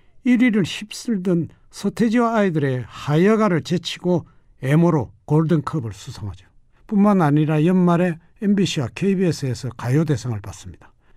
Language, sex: Korean, male